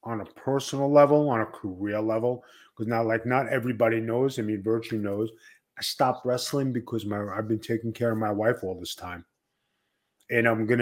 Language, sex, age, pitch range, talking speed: English, male, 30-49, 115-135 Hz, 200 wpm